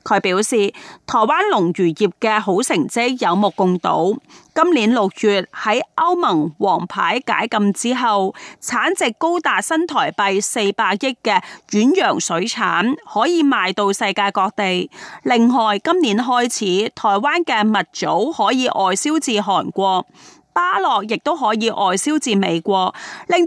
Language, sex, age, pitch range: Chinese, female, 30-49, 200-285 Hz